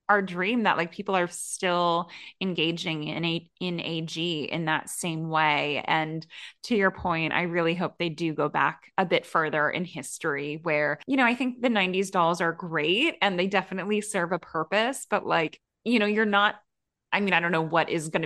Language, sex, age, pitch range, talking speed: English, female, 20-39, 160-200 Hz, 205 wpm